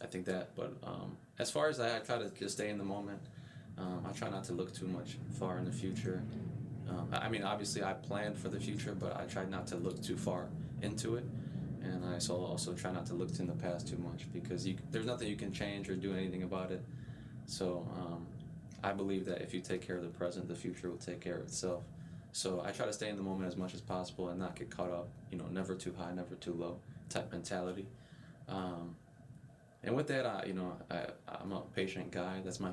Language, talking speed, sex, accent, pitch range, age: English, 240 wpm, male, American, 90-95 Hz, 20-39